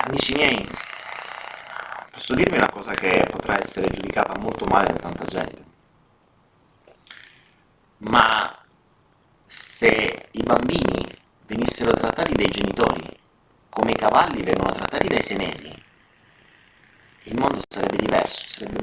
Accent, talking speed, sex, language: native, 110 wpm, male, Italian